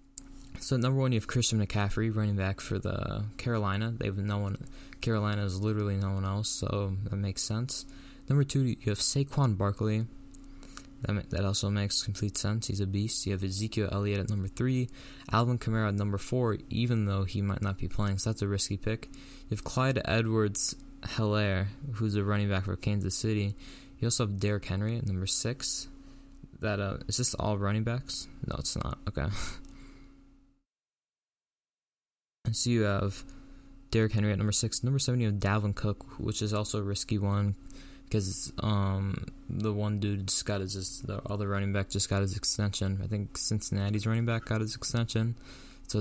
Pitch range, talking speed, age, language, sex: 100-120 Hz, 185 wpm, 20-39, English, male